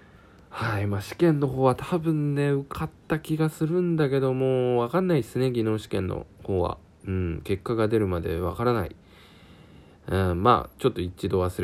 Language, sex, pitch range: Japanese, male, 90-115 Hz